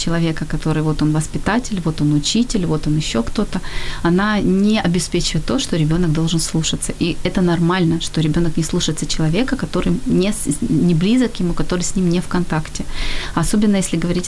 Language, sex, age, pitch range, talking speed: Ukrainian, female, 30-49, 165-205 Hz, 175 wpm